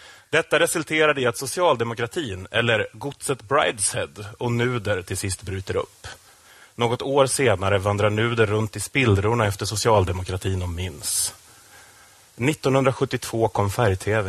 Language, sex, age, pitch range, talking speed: Swedish, male, 30-49, 100-130 Hz, 115 wpm